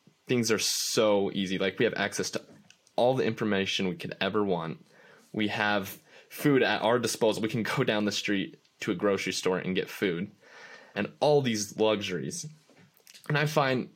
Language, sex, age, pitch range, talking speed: English, male, 10-29, 95-120 Hz, 180 wpm